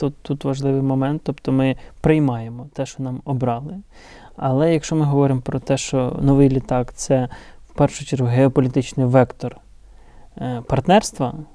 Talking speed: 140 wpm